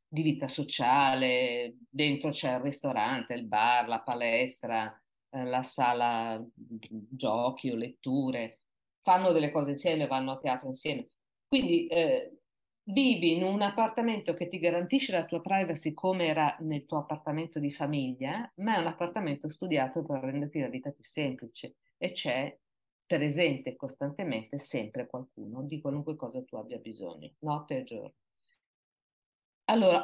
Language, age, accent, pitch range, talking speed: Italian, 50-69, native, 135-190 Hz, 140 wpm